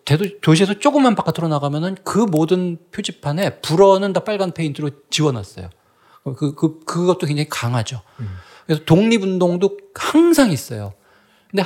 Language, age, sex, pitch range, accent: Korean, 40-59, male, 140-200 Hz, native